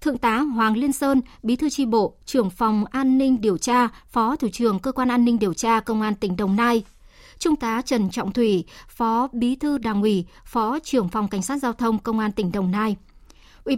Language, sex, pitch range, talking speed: Vietnamese, male, 210-265 Hz, 225 wpm